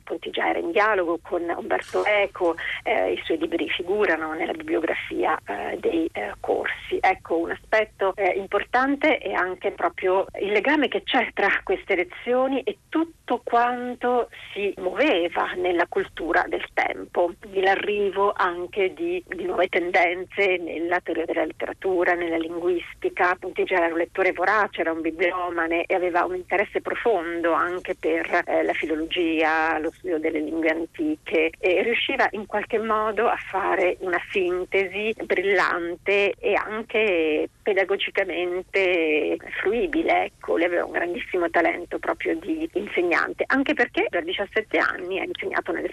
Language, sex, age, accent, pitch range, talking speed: Italian, female, 40-59, native, 175-245 Hz, 140 wpm